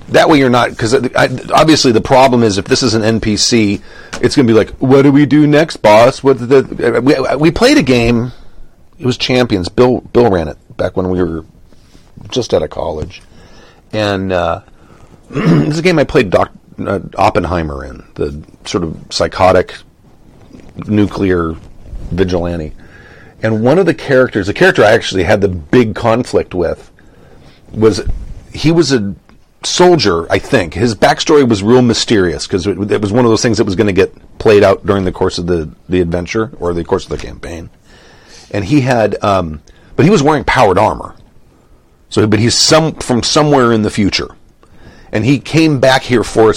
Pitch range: 90-125 Hz